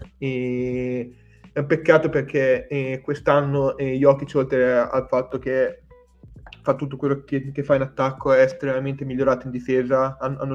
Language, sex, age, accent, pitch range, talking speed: Italian, male, 20-39, native, 125-140 Hz, 150 wpm